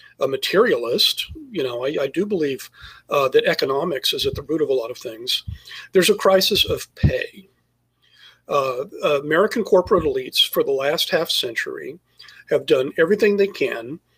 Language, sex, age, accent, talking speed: English, male, 50-69, American, 165 wpm